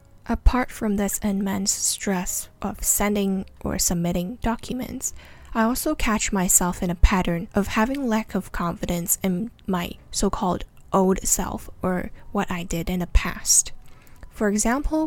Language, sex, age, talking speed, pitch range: English, female, 10-29, 145 wpm, 185-215 Hz